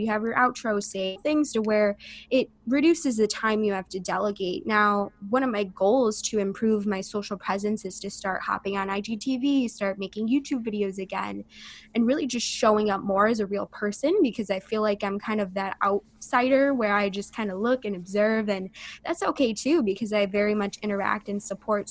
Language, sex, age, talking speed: English, female, 20-39, 205 wpm